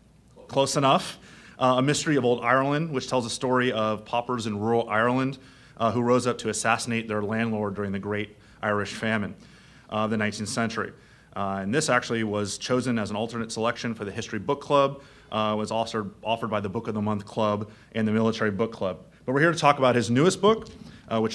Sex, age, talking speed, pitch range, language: male, 30-49, 220 wpm, 105-125 Hz, English